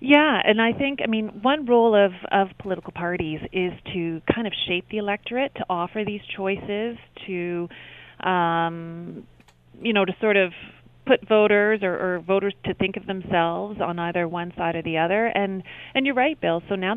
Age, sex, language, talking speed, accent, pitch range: 30-49, female, English, 185 wpm, American, 165-205 Hz